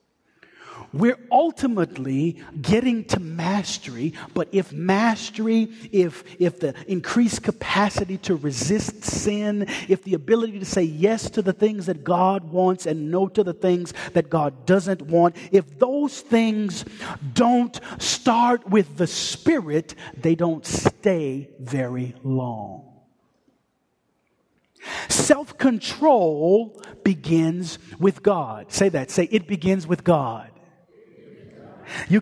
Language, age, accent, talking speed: English, 40-59, American, 115 wpm